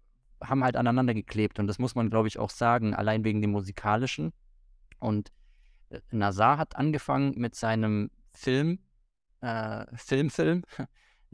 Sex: male